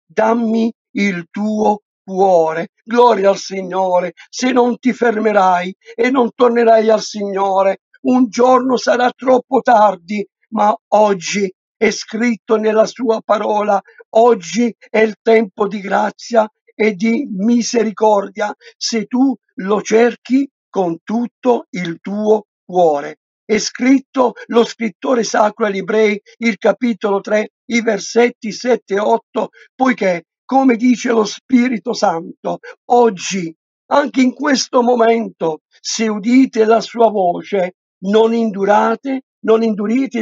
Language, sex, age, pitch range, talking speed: Italian, male, 60-79, 205-240 Hz, 120 wpm